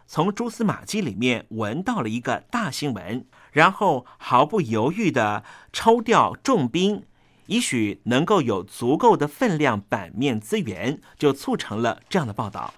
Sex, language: male, Chinese